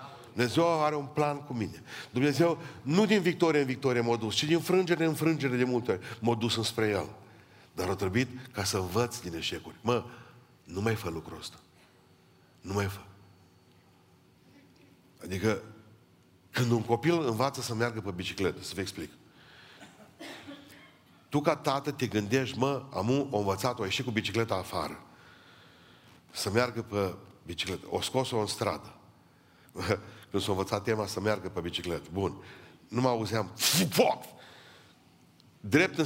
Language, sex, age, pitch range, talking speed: Romanian, male, 50-69, 95-125 Hz, 155 wpm